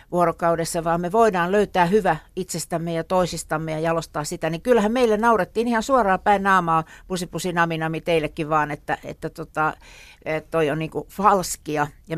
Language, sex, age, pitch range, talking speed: Finnish, female, 60-79, 160-190 Hz, 160 wpm